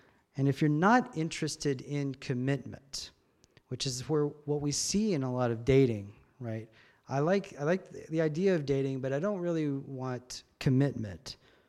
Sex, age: male, 40-59